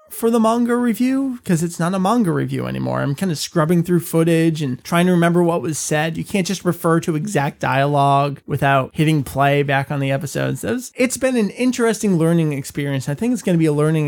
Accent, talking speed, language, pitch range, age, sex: American, 220 wpm, English, 140-180 Hz, 30-49, male